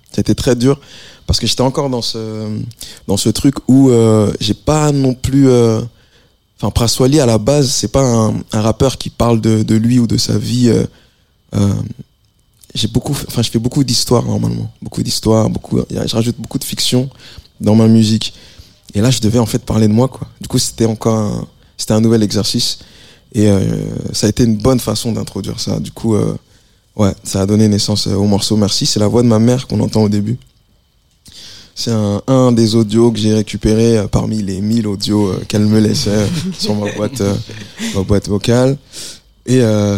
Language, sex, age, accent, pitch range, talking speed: French, male, 20-39, French, 105-120 Hz, 205 wpm